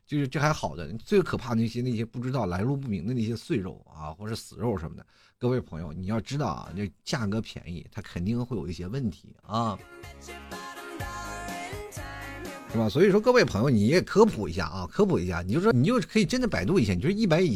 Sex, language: male, Chinese